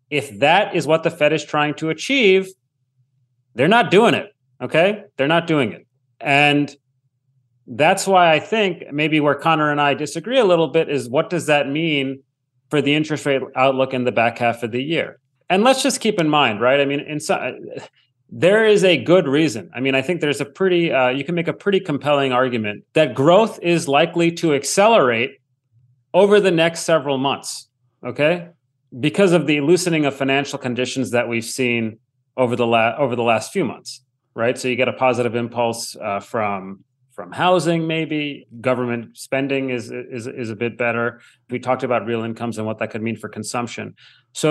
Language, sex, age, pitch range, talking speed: English, male, 30-49, 125-165 Hz, 190 wpm